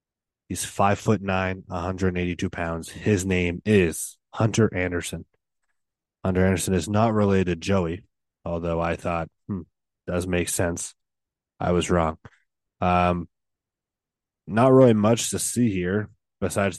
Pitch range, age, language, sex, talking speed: 85-95 Hz, 20-39, English, male, 135 wpm